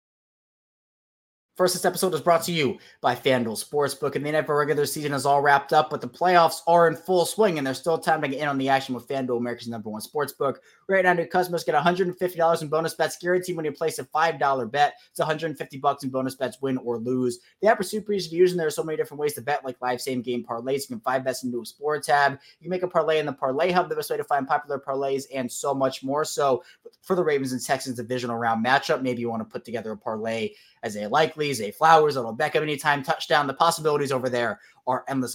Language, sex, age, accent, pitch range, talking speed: English, male, 20-39, American, 125-160 Hz, 250 wpm